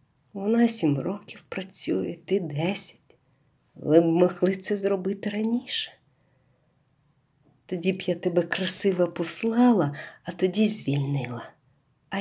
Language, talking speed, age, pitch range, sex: Ukrainian, 110 wpm, 50-69, 135-170 Hz, female